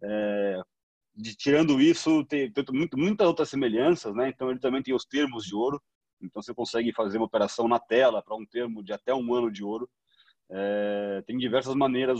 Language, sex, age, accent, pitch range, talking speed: Portuguese, male, 30-49, Brazilian, 115-135 Hz, 195 wpm